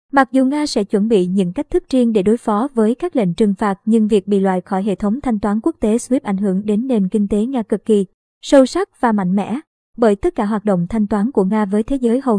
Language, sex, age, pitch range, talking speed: Vietnamese, male, 20-39, 210-260 Hz, 275 wpm